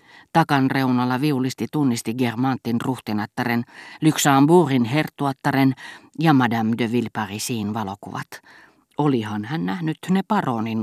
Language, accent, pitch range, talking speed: Finnish, native, 115-145 Hz, 100 wpm